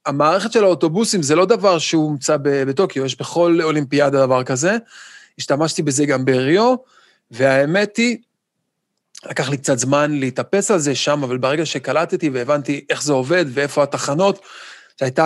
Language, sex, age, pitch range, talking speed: Hebrew, male, 30-49, 135-180 Hz, 145 wpm